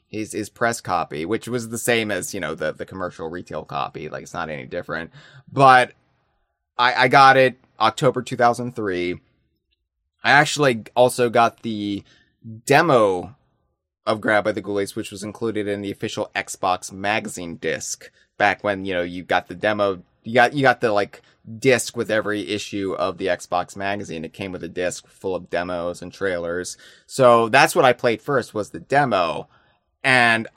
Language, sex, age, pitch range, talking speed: English, male, 20-39, 95-125 Hz, 180 wpm